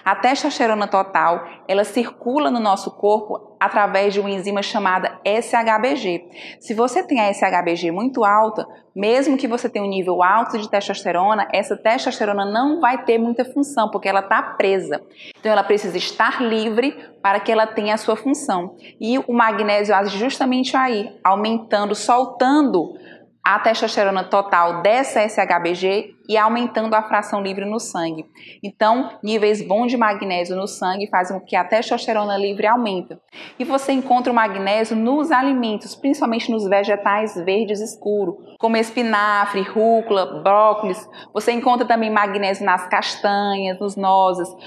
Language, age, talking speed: Portuguese, 20-39, 150 wpm